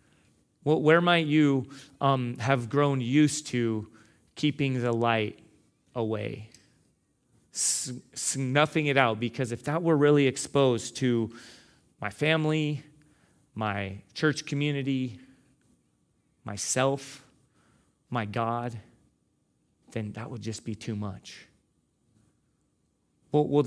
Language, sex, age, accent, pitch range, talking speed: English, male, 30-49, American, 115-145 Hz, 100 wpm